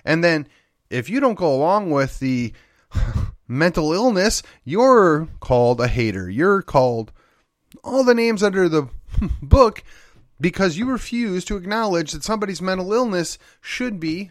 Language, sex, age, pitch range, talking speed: English, male, 30-49, 130-195 Hz, 145 wpm